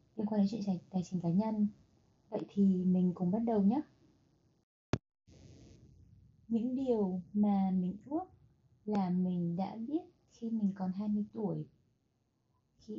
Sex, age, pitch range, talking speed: female, 20-39, 175-225 Hz, 140 wpm